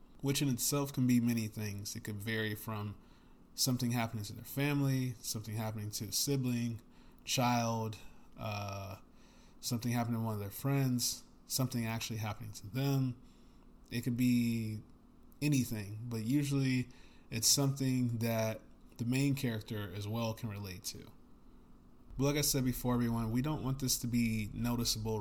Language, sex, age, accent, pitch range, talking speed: English, male, 20-39, American, 110-125 Hz, 155 wpm